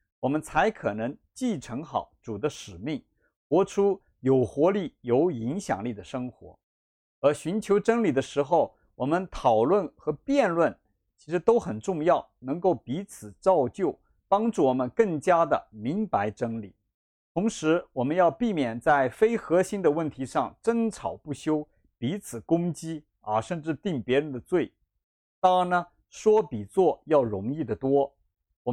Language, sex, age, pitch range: Chinese, male, 50-69, 120-190 Hz